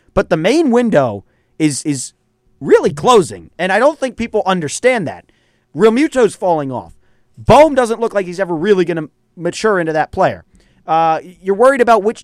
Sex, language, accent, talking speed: male, English, American, 180 wpm